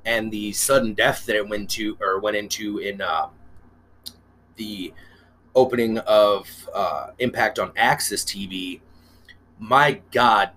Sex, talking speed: male, 130 wpm